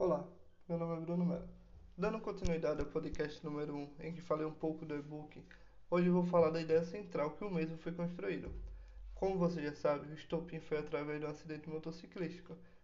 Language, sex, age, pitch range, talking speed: Portuguese, male, 20-39, 155-175 Hz, 205 wpm